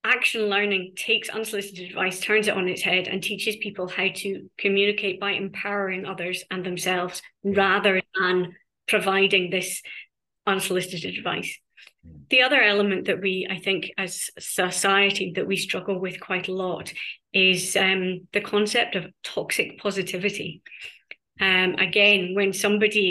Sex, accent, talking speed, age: female, British, 140 wpm, 30-49